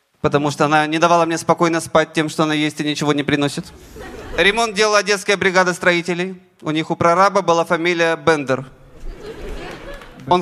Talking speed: 165 wpm